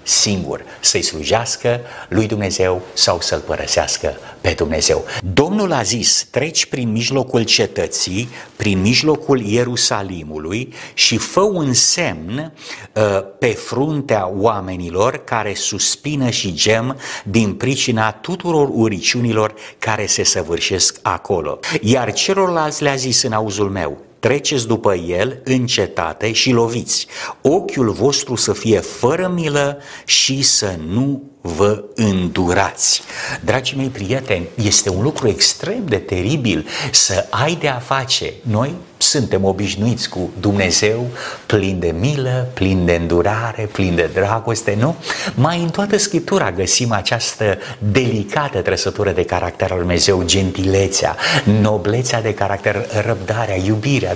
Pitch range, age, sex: 100-135 Hz, 60-79, male